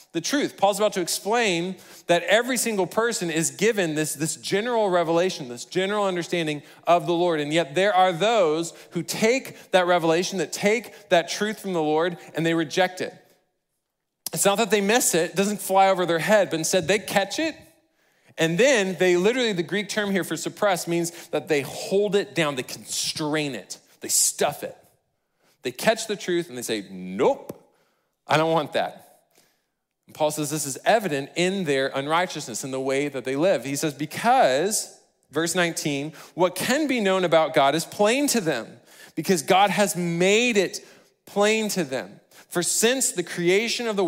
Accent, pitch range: American, 155-200 Hz